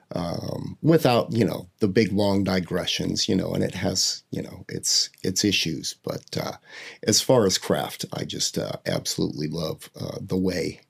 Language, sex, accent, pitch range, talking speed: English, male, American, 100-125 Hz, 175 wpm